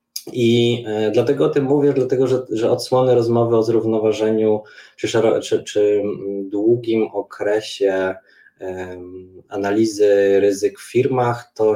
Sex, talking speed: male, 130 wpm